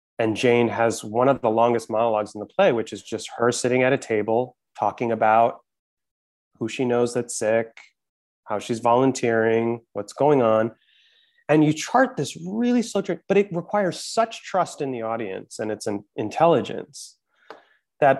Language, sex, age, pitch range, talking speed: English, male, 30-49, 115-160 Hz, 170 wpm